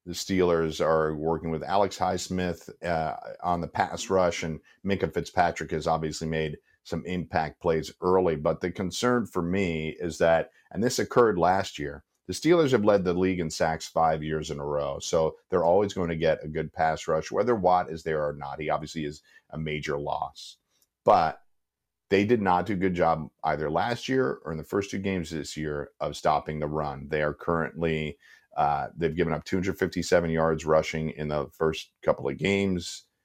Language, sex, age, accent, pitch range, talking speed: English, male, 50-69, American, 80-90 Hz, 195 wpm